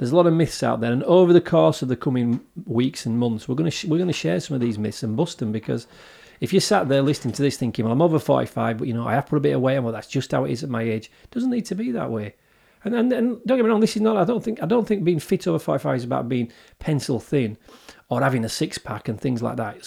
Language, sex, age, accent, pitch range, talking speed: English, male, 40-59, British, 115-160 Hz, 310 wpm